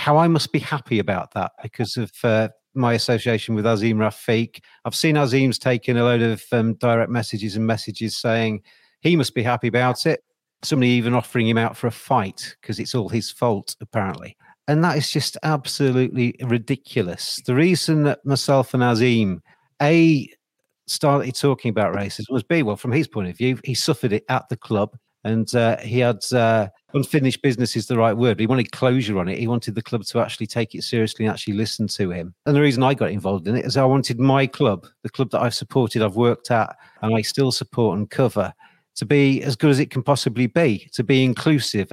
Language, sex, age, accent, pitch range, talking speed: English, male, 40-59, British, 115-135 Hz, 215 wpm